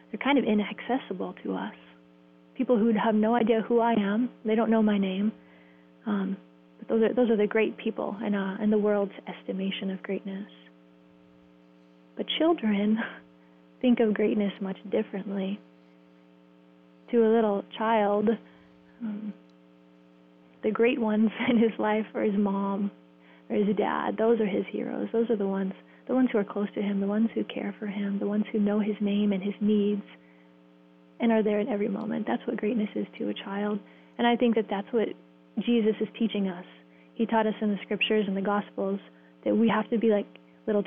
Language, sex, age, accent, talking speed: English, female, 30-49, American, 185 wpm